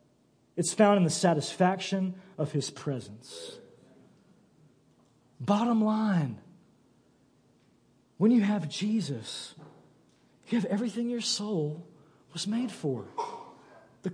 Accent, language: American, English